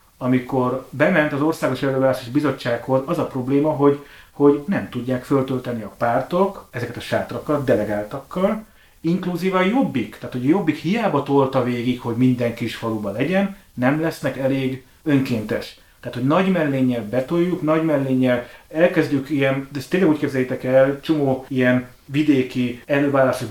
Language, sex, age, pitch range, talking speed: Hungarian, male, 30-49, 130-155 Hz, 150 wpm